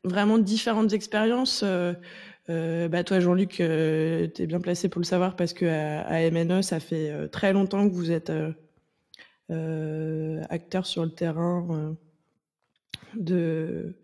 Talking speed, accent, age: 150 wpm, French, 20-39